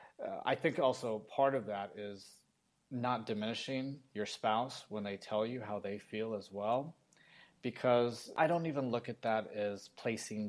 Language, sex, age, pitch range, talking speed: English, male, 30-49, 105-130 Hz, 165 wpm